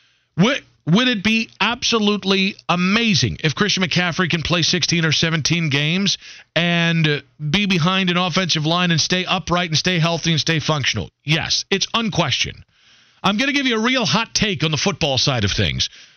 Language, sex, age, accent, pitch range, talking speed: English, male, 40-59, American, 155-205 Hz, 180 wpm